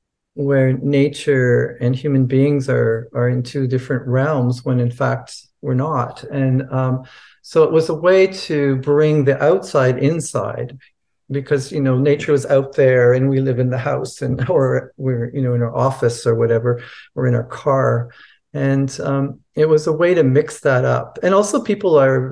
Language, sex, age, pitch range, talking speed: English, male, 50-69, 125-150 Hz, 185 wpm